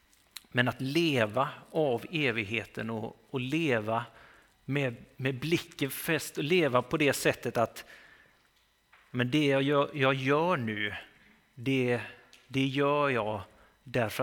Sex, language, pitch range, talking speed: male, Swedish, 115-140 Hz, 125 wpm